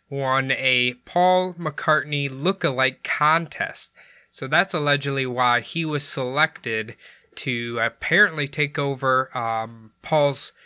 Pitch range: 130-155 Hz